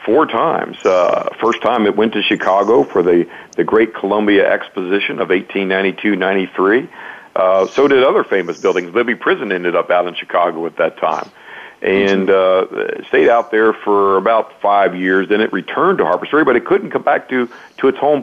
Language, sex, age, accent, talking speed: English, male, 50-69, American, 190 wpm